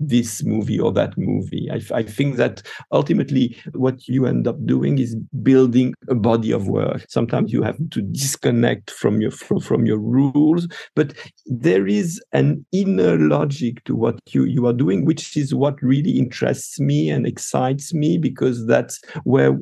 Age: 50-69